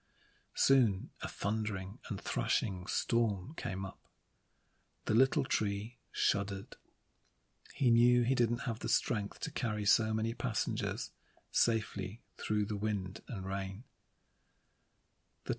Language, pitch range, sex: English, 100-115 Hz, male